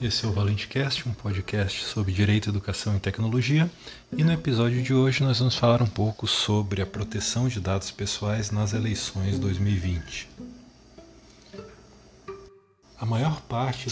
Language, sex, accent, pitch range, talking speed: Portuguese, male, Brazilian, 100-125 Hz, 140 wpm